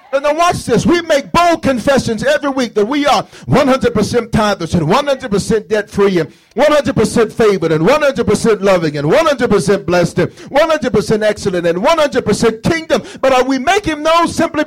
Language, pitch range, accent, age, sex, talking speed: English, 195-280 Hz, American, 50-69, male, 160 wpm